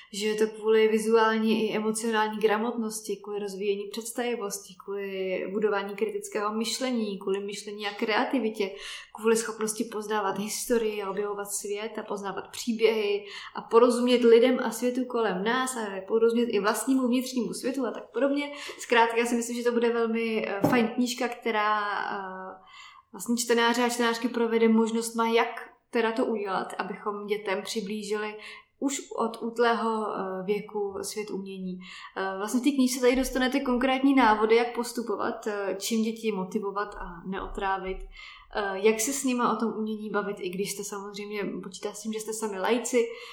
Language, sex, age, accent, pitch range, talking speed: Czech, female, 20-39, native, 205-235 Hz, 150 wpm